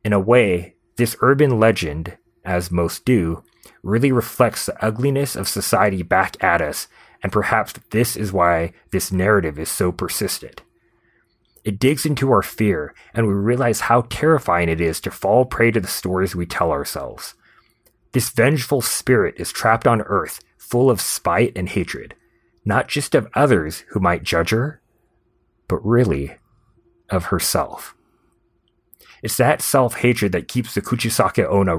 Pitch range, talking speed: 95-120 Hz, 150 wpm